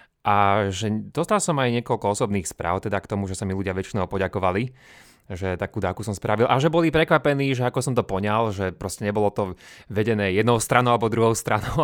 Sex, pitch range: male, 95-120 Hz